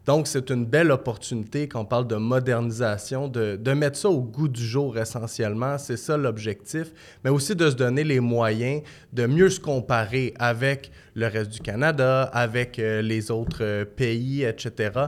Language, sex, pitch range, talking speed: French, male, 115-135 Hz, 170 wpm